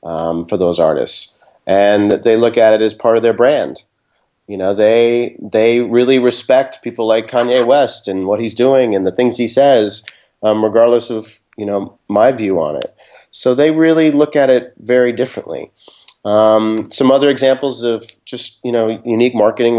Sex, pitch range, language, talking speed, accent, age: male, 105-125 Hz, English, 185 wpm, American, 40-59